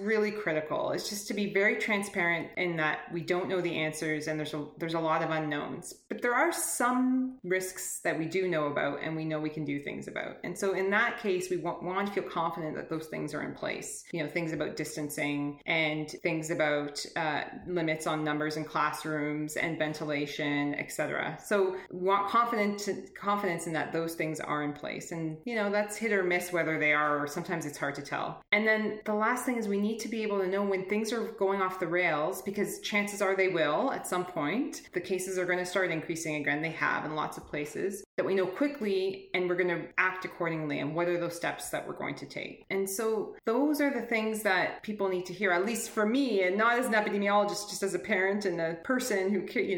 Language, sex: English, female